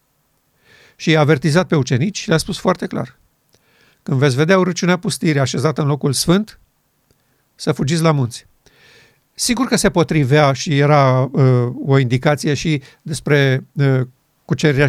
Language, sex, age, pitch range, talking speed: Romanian, male, 50-69, 135-170 Hz, 145 wpm